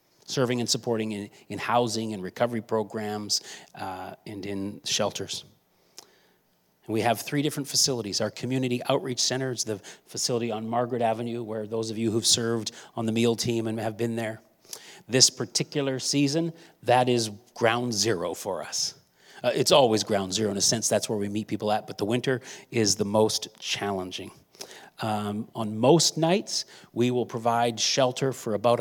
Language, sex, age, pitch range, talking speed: English, male, 40-59, 105-125 Hz, 170 wpm